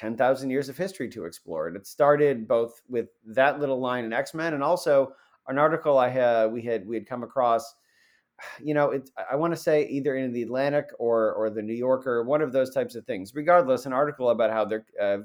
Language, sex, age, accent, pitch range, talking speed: English, male, 30-49, American, 110-135 Hz, 230 wpm